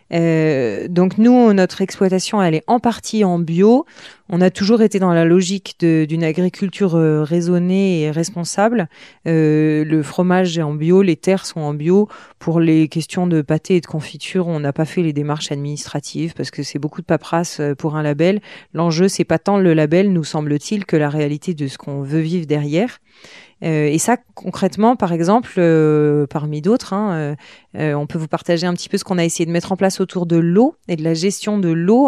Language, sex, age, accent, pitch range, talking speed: French, female, 30-49, French, 155-195 Hz, 210 wpm